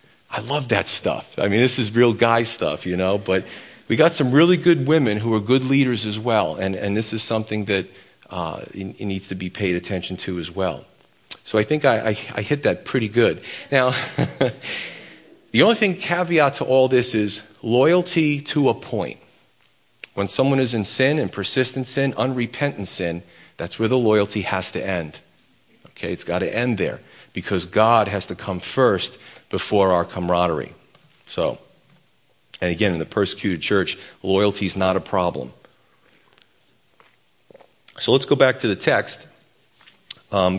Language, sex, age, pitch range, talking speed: English, male, 40-59, 95-130 Hz, 170 wpm